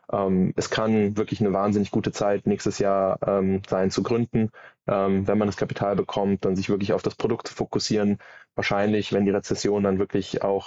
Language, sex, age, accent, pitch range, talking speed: German, male, 20-39, German, 95-105 Hz, 190 wpm